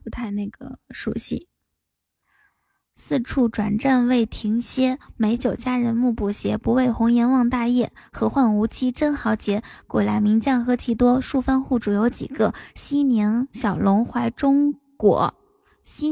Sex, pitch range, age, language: female, 225-265 Hz, 10-29, Chinese